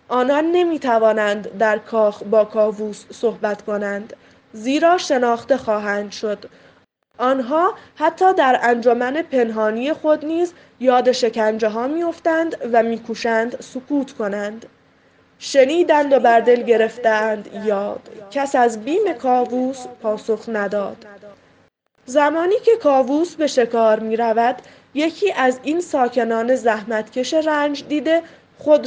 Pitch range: 220-300 Hz